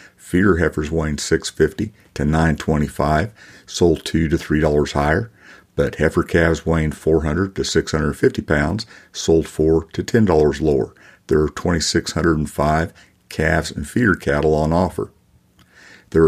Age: 50-69